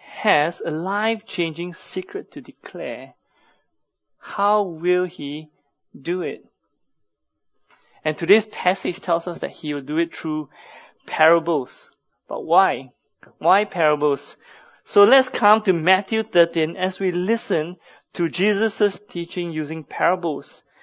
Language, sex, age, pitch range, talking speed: English, male, 20-39, 160-210 Hz, 120 wpm